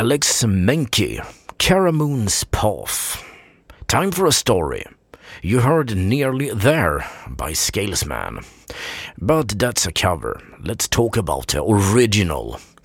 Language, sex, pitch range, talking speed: English, male, 95-135 Hz, 105 wpm